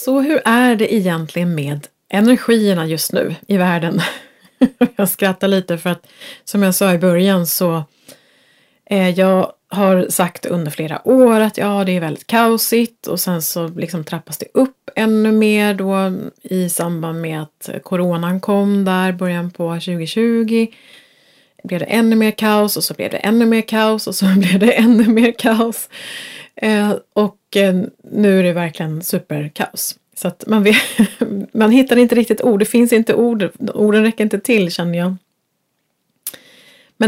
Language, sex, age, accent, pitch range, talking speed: Swedish, female, 30-49, native, 175-230 Hz, 165 wpm